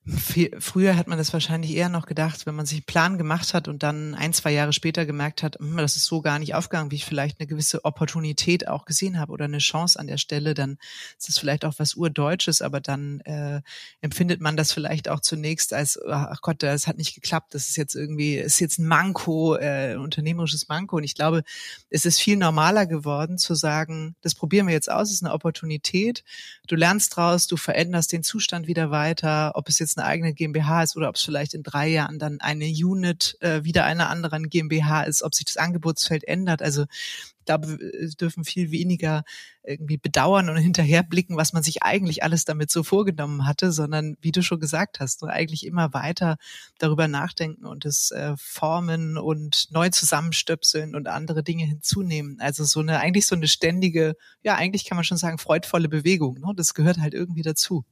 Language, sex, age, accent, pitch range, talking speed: German, female, 30-49, German, 150-170 Hz, 205 wpm